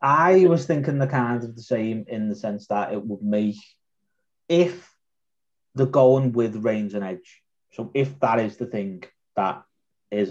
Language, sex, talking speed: English, male, 175 wpm